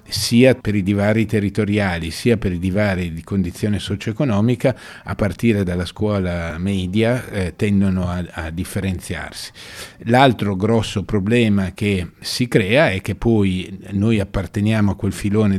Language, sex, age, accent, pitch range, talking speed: Italian, male, 50-69, native, 95-110 Hz, 140 wpm